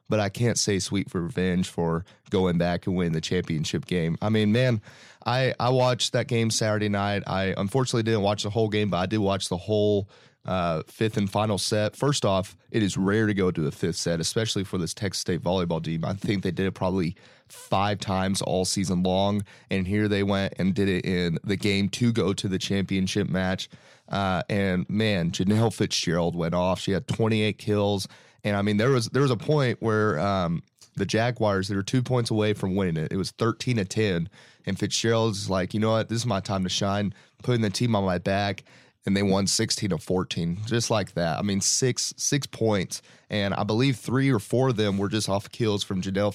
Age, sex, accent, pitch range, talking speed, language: 30-49, male, American, 95-110 Hz, 220 wpm, English